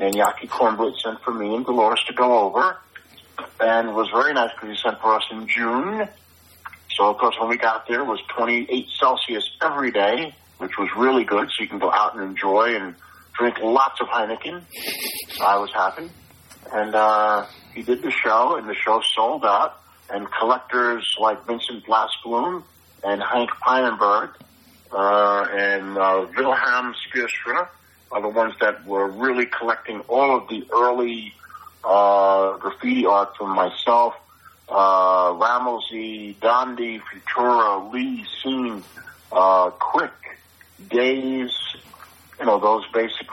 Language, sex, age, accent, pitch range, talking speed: English, male, 40-59, American, 100-120 Hz, 150 wpm